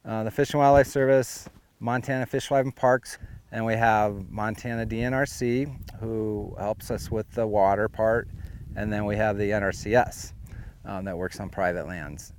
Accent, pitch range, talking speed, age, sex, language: American, 105-130 Hz, 170 wpm, 40-59, male, English